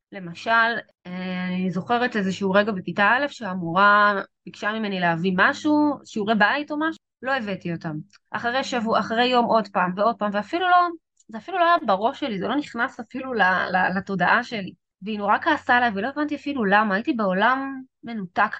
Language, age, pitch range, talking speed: Hebrew, 20-39, 195-250 Hz, 170 wpm